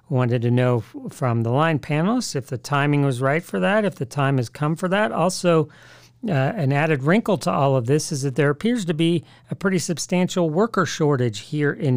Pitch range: 130-165 Hz